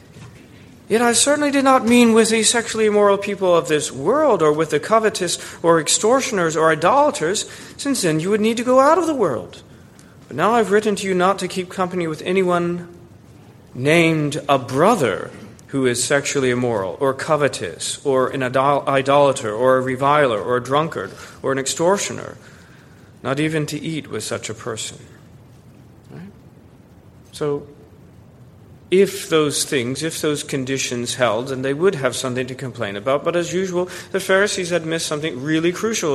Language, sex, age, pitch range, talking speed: English, male, 40-59, 135-215 Hz, 165 wpm